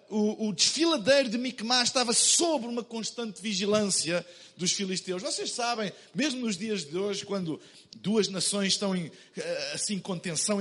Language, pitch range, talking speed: Portuguese, 200-255 Hz, 145 wpm